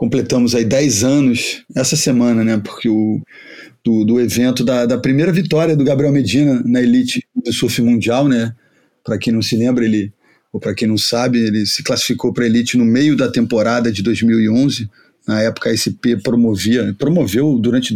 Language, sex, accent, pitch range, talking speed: Portuguese, male, Brazilian, 115-135 Hz, 185 wpm